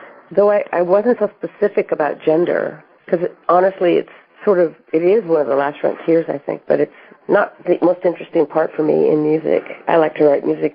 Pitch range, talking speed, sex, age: 140-170 Hz, 210 wpm, female, 50-69